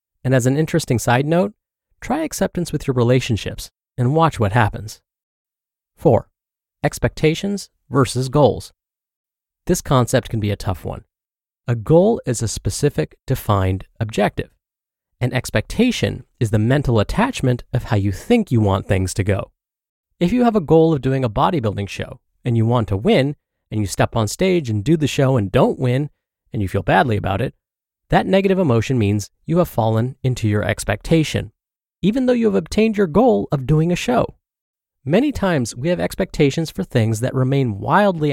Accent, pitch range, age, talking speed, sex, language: American, 105-155 Hz, 30-49, 175 wpm, male, English